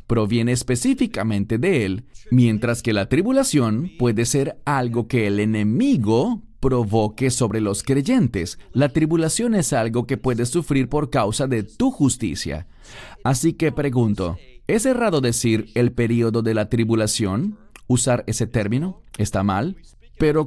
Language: English